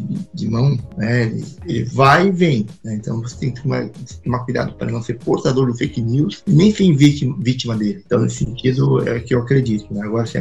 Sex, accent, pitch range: male, Brazilian, 115-145 Hz